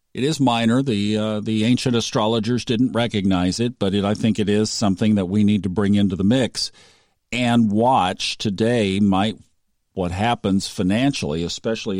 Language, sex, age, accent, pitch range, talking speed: English, male, 50-69, American, 100-125 Hz, 170 wpm